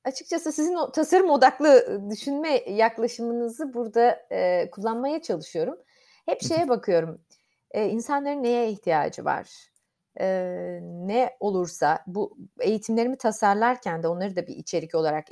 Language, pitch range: Turkish, 190-285 Hz